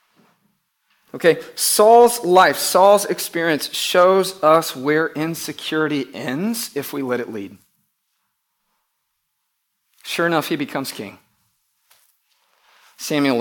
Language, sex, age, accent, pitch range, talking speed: English, male, 40-59, American, 145-210 Hz, 95 wpm